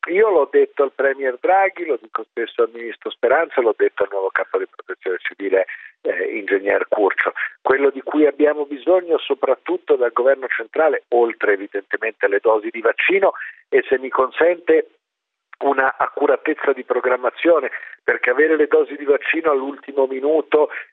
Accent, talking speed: native, 155 wpm